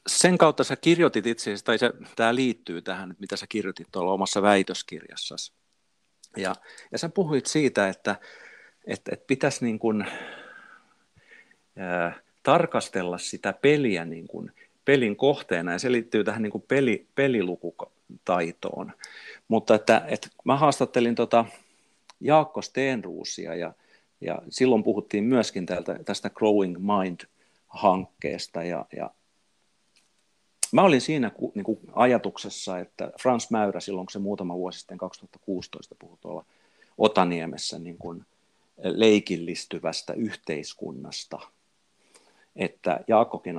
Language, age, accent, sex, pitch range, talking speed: Finnish, 50-69, native, male, 90-120 Hz, 115 wpm